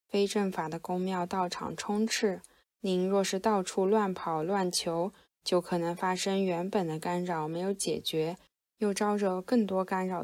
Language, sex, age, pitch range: Chinese, female, 10-29, 175-205 Hz